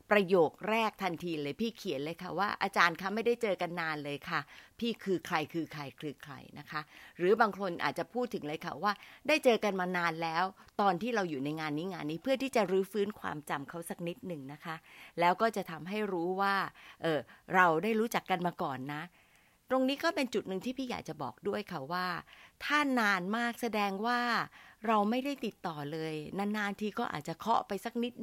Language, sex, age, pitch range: Thai, female, 30-49, 160-215 Hz